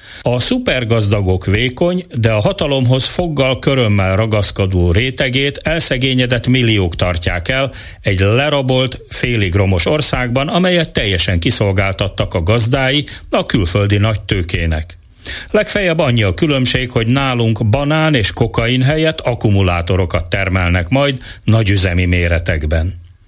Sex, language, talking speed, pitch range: male, Hungarian, 105 wpm, 95-130 Hz